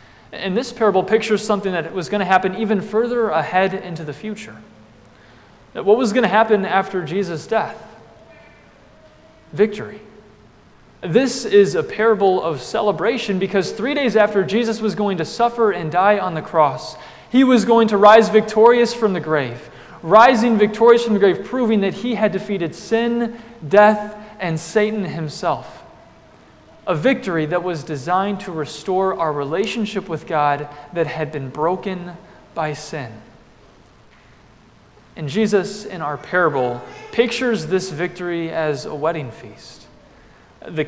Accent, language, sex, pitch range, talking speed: American, English, male, 155-215 Hz, 145 wpm